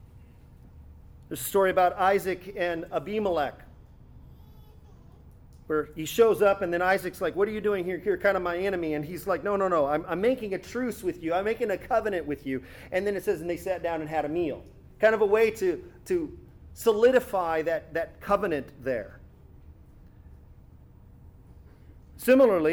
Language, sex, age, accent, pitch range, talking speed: English, male, 40-59, American, 165-200 Hz, 180 wpm